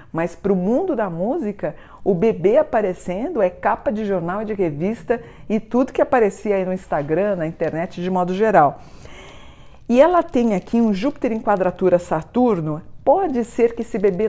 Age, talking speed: 50-69, 175 wpm